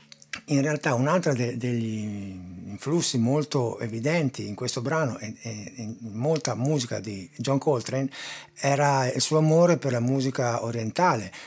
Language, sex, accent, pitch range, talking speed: Italian, male, native, 105-135 Hz, 140 wpm